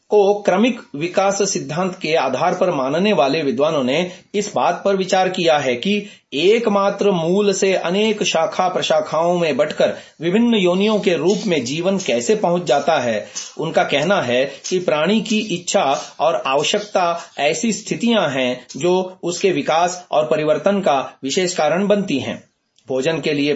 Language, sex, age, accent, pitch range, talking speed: Hindi, male, 30-49, native, 165-210 Hz, 160 wpm